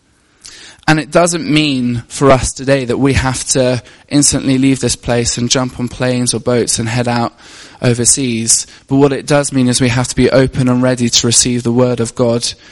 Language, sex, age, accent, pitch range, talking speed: English, male, 20-39, British, 115-130 Hz, 210 wpm